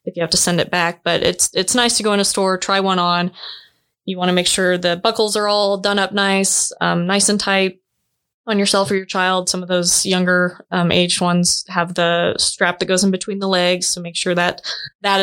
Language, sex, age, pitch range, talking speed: English, female, 20-39, 175-195 Hz, 240 wpm